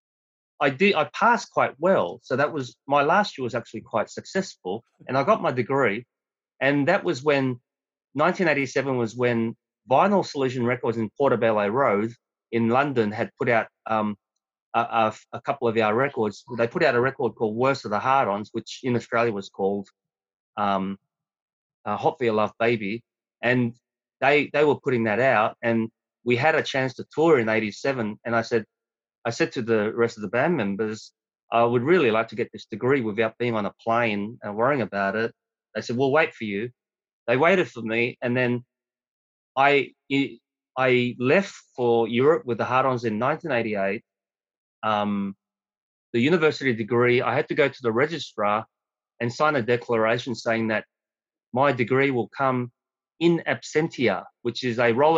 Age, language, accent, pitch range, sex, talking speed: 30-49, English, Australian, 110-130 Hz, male, 175 wpm